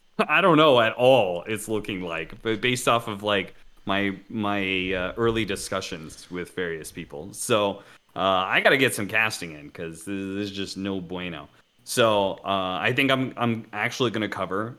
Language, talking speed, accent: English, 175 wpm, American